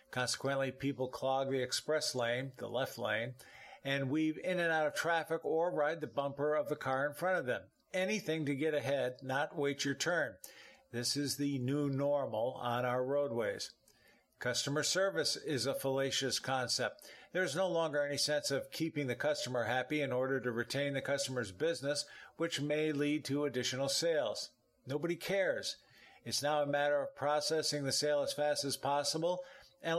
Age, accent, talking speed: 50-69, American, 175 wpm